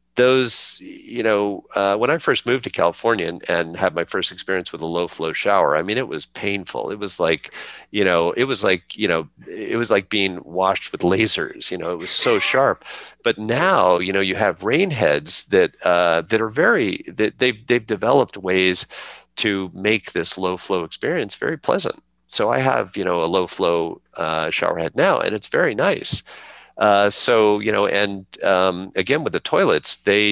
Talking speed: 200 wpm